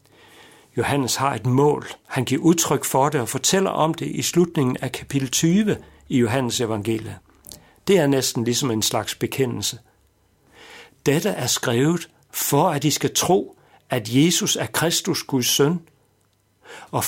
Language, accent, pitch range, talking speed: Danish, native, 115-150 Hz, 150 wpm